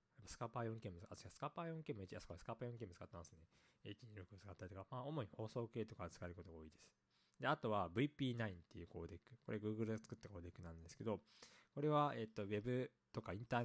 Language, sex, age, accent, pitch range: Japanese, male, 20-39, native, 90-125 Hz